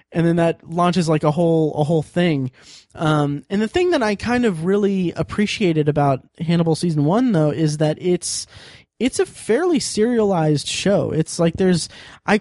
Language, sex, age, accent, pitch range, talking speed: English, male, 20-39, American, 145-185 Hz, 180 wpm